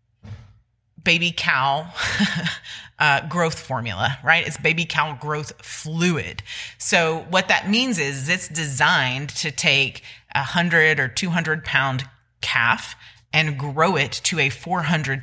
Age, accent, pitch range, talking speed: 30-49, American, 125-170 Hz, 135 wpm